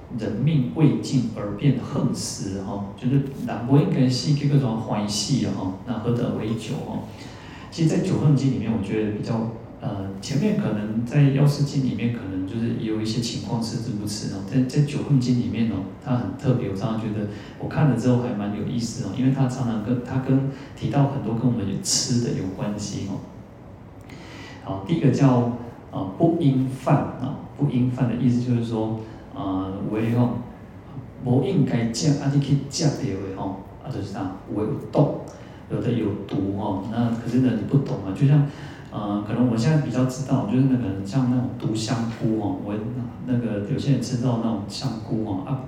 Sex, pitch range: male, 110-135 Hz